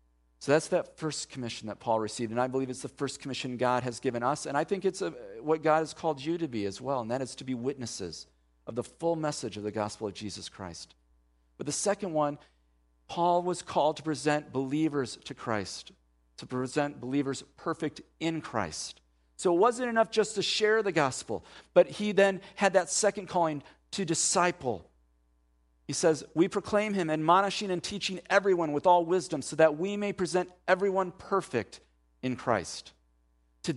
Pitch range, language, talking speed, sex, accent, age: 110-180 Hz, English, 190 wpm, male, American, 40-59